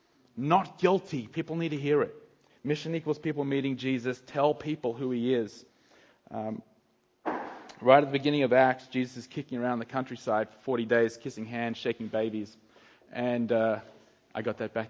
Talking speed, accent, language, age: 175 wpm, Australian, English, 30-49